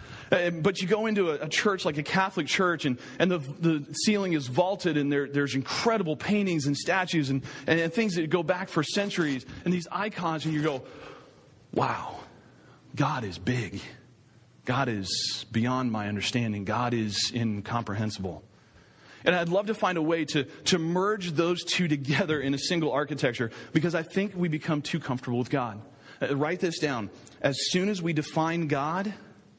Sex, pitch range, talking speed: male, 130-180 Hz, 180 wpm